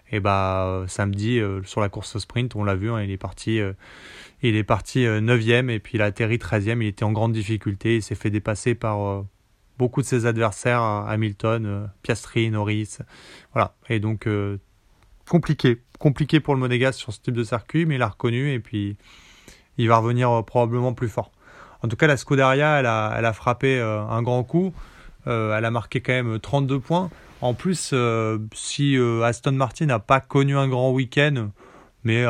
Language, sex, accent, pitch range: French, male, French, 105-130 Hz